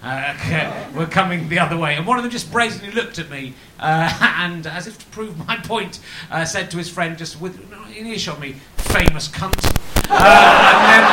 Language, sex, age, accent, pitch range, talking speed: English, male, 30-49, British, 160-205 Hz, 215 wpm